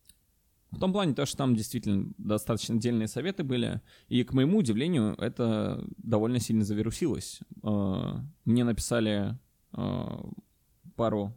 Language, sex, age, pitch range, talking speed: Russian, male, 20-39, 105-125 Hz, 115 wpm